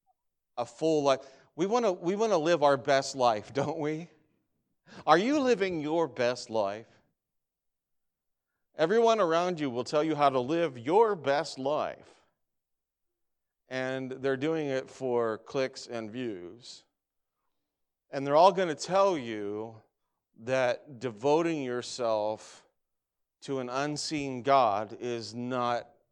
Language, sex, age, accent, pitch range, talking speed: English, male, 40-59, American, 115-150 Hz, 125 wpm